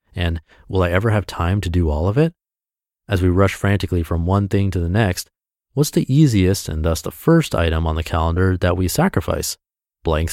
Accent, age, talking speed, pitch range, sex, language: American, 30-49, 210 wpm, 85-115 Hz, male, English